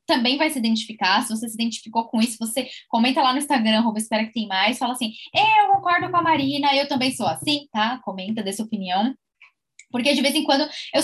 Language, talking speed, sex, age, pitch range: Portuguese, 225 wpm, female, 10-29, 215-285 Hz